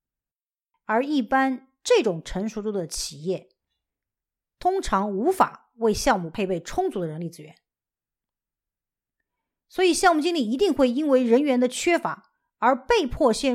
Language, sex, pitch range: Chinese, female, 185-280 Hz